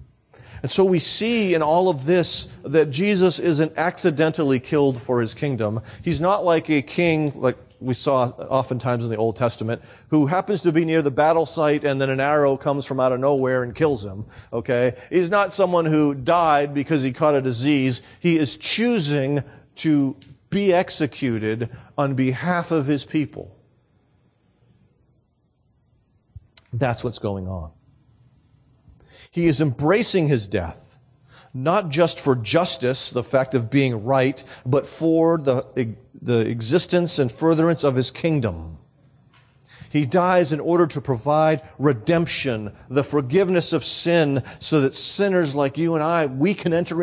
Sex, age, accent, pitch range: male, 40-59, American, 125-160 Hz